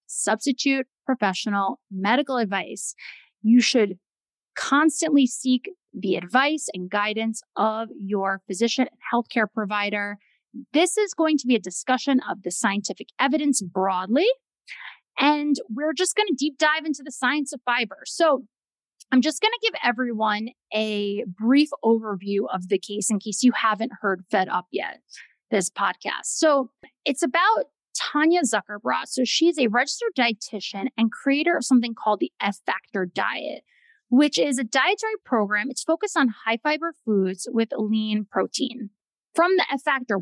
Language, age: English, 30-49